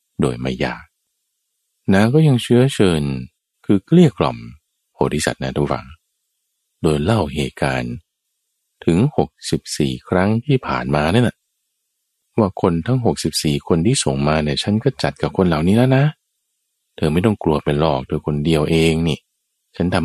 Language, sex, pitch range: Thai, male, 75-115 Hz